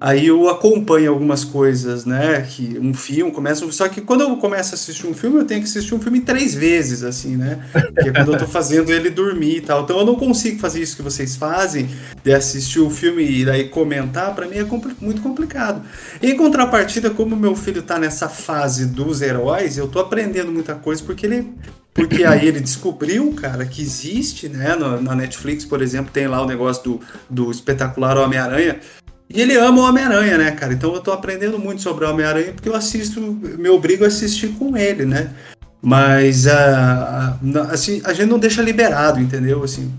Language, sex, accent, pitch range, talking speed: Portuguese, male, Brazilian, 135-195 Hz, 195 wpm